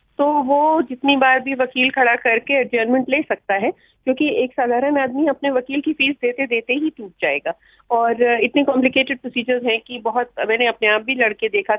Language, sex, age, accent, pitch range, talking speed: Hindi, female, 40-59, native, 220-285 Hz, 195 wpm